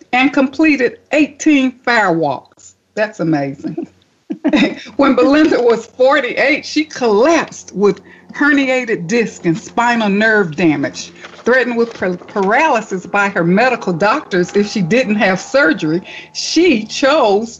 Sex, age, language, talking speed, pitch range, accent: female, 60-79, English, 115 wpm, 185-250 Hz, American